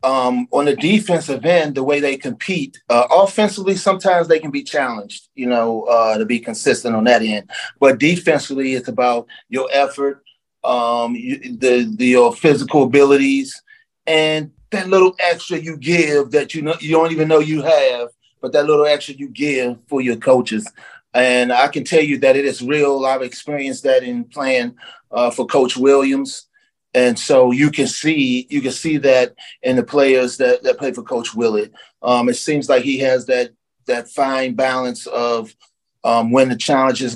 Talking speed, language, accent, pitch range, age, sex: 180 wpm, English, American, 125-155 Hz, 30-49, male